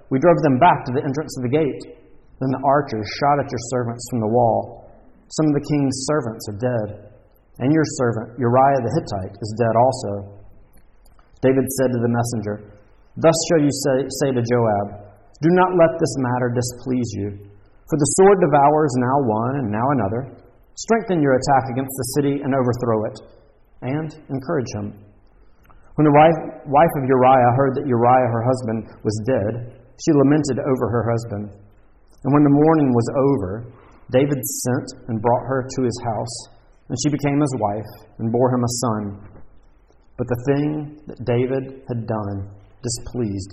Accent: American